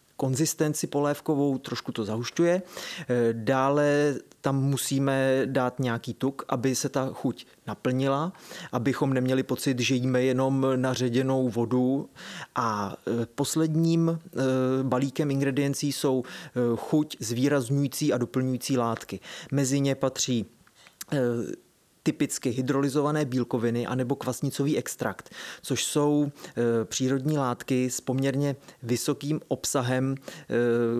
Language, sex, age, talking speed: Czech, male, 30-49, 105 wpm